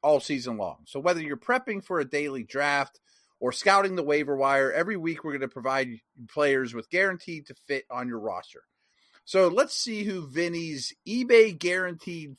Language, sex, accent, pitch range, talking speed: English, male, American, 130-170 Hz, 180 wpm